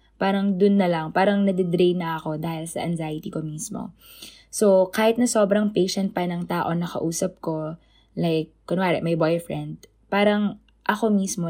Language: Filipino